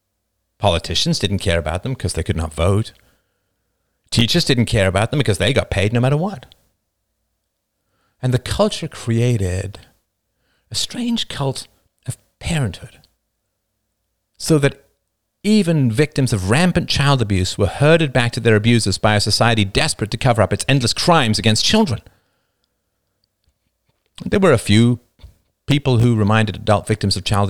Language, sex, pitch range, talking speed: English, male, 100-125 Hz, 150 wpm